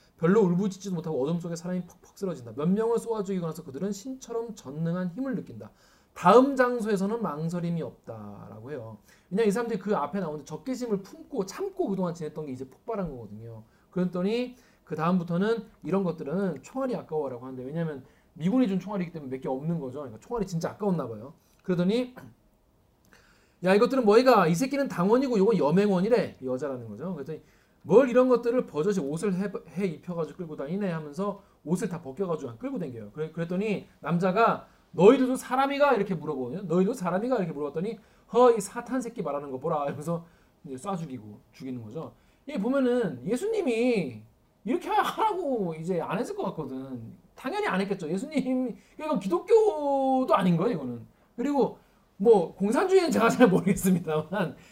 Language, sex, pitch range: Korean, male, 160-240 Hz